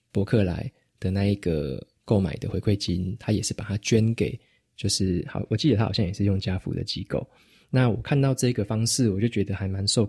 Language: Chinese